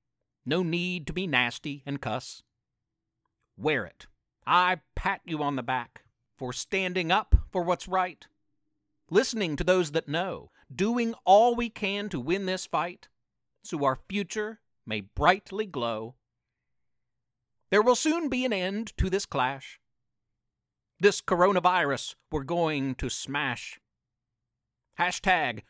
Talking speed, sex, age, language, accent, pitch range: 130 wpm, male, 50-69, English, American, 125-195 Hz